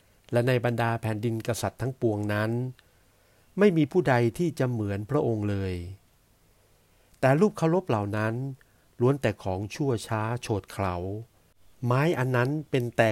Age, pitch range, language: 60-79, 105-130 Hz, Thai